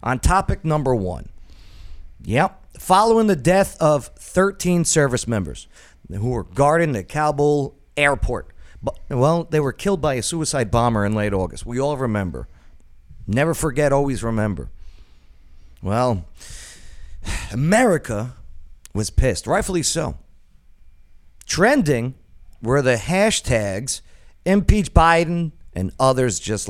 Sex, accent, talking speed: male, American, 115 wpm